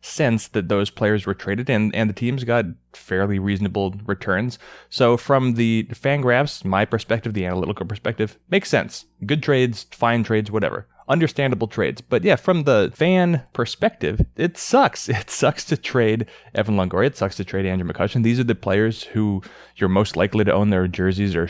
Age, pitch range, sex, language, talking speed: 20-39, 100-125 Hz, male, English, 185 wpm